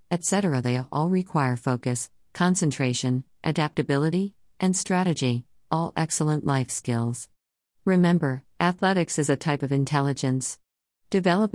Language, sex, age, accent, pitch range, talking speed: English, female, 50-69, American, 130-170 Hz, 110 wpm